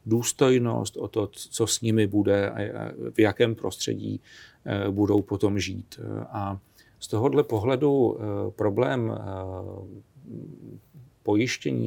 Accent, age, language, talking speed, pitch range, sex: native, 40-59, Czech, 100 wpm, 100-115 Hz, male